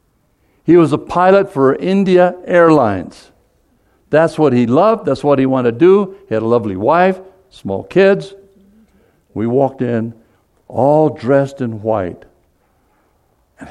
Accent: American